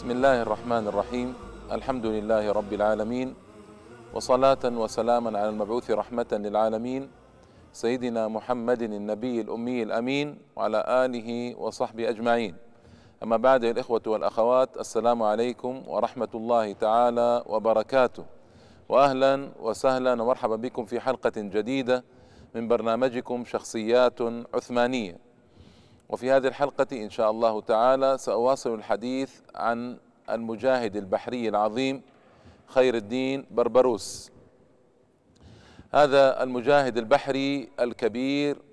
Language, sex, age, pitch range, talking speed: Arabic, male, 40-59, 115-130 Hz, 100 wpm